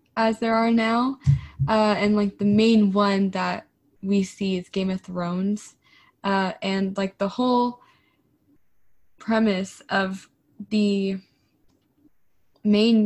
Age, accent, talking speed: 10-29, American, 120 wpm